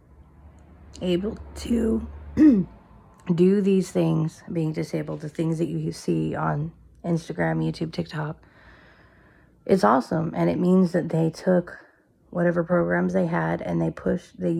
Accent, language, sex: American, English, female